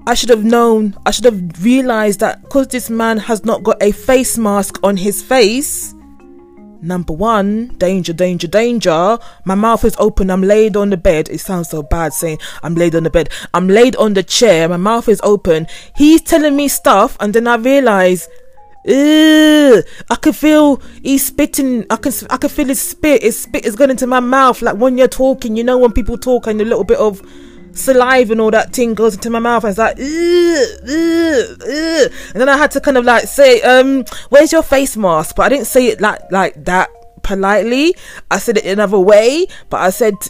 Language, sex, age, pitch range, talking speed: English, female, 20-39, 195-260 Hz, 215 wpm